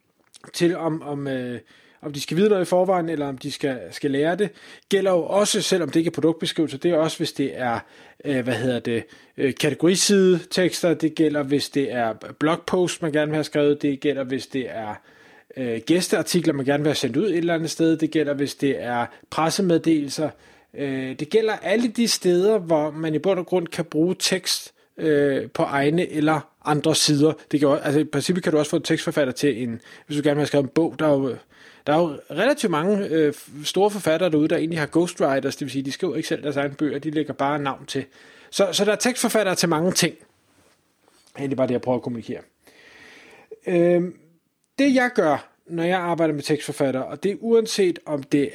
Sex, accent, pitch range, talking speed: male, native, 140-175 Hz, 215 wpm